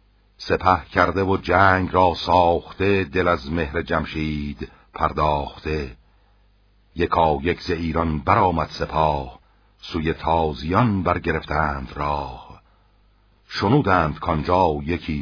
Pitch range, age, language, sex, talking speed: 80-100 Hz, 60-79, Persian, male, 90 wpm